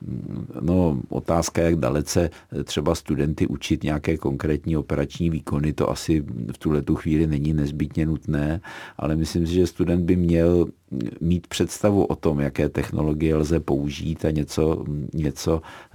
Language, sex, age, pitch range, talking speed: Czech, male, 50-69, 80-90 Hz, 140 wpm